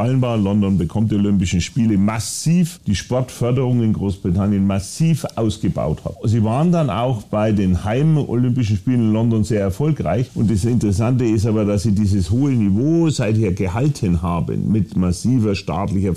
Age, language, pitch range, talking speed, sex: 40-59, German, 95-115 Hz, 150 wpm, male